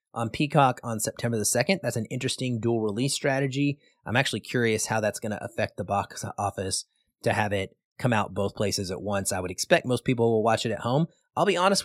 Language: English